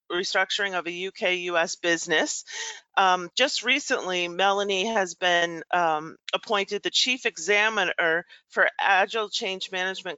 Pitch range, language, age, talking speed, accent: 170-210 Hz, English, 40-59, 120 wpm, American